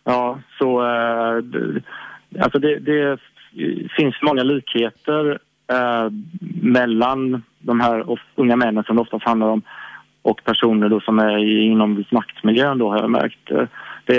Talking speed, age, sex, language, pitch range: 135 wpm, 30-49, male, Swedish, 115-130 Hz